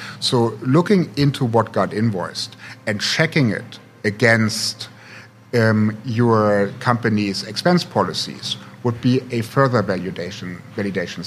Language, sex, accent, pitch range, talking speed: English, male, German, 105-130 Hz, 110 wpm